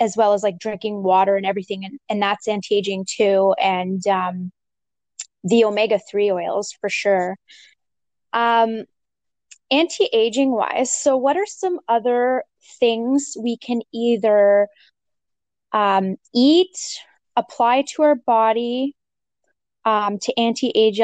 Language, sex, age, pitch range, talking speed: English, female, 10-29, 205-245 Hz, 115 wpm